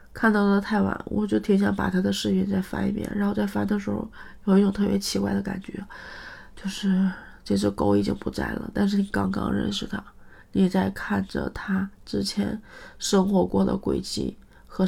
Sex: female